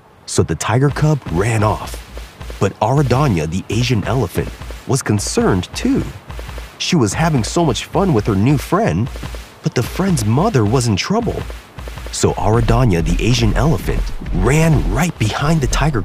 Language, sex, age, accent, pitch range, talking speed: English, male, 30-49, American, 105-150 Hz, 155 wpm